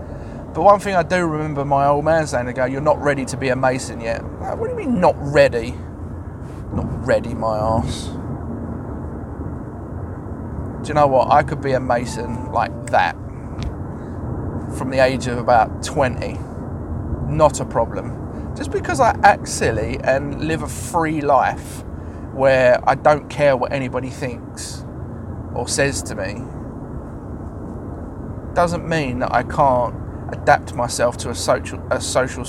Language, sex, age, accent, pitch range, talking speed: English, male, 30-49, British, 115-145 Hz, 155 wpm